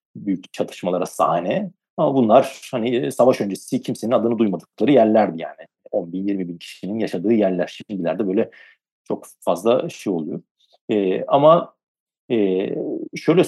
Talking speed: 130 wpm